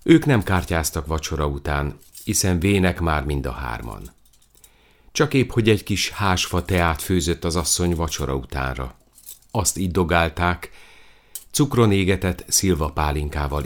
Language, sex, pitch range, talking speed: Hungarian, male, 75-100 Hz, 125 wpm